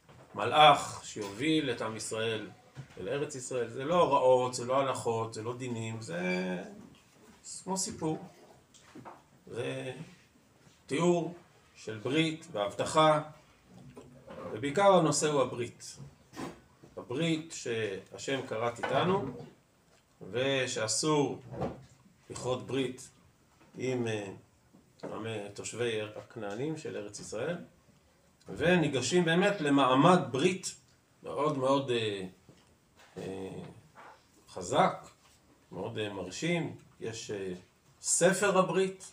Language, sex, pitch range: Hebrew, male, 115-155 Hz